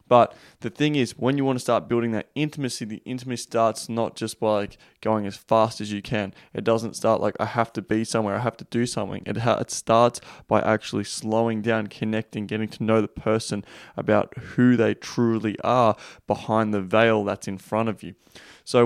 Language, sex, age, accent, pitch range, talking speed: English, male, 20-39, Australian, 110-120 Hz, 205 wpm